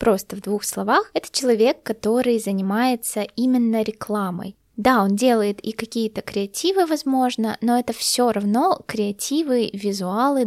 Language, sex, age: Russian, female, 20-39